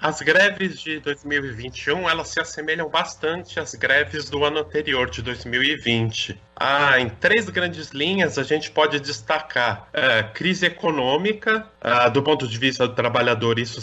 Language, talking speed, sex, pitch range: Portuguese, 140 wpm, male, 115-170 Hz